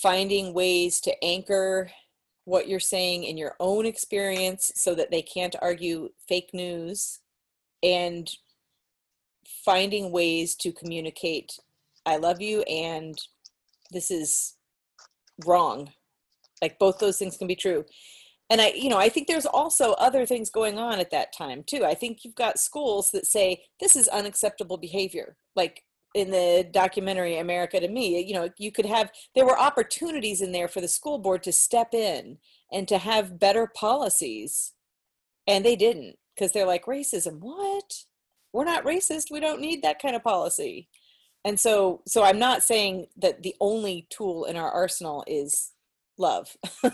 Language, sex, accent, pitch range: English, female, American, 175-225 Hz